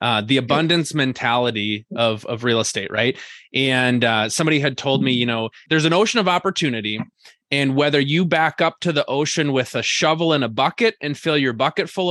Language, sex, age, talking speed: English, male, 20-39, 205 wpm